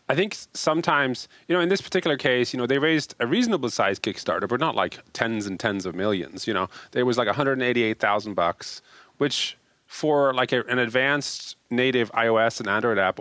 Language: English